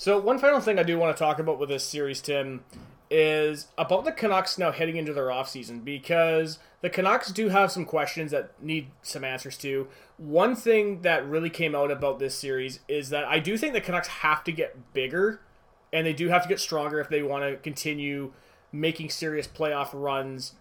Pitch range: 140-170 Hz